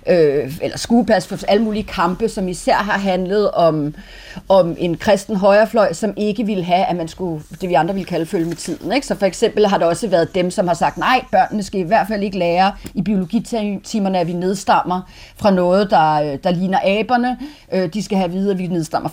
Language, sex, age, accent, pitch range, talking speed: Danish, female, 40-59, native, 180-230 Hz, 215 wpm